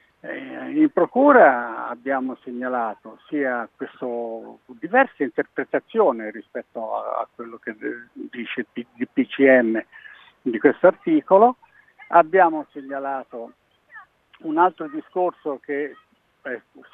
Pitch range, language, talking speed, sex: 125-190 Hz, Italian, 95 wpm, male